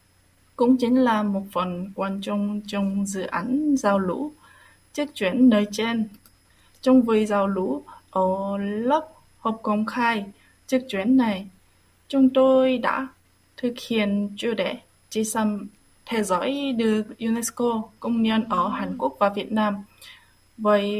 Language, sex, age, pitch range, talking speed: Vietnamese, female, 20-39, 200-255 Hz, 145 wpm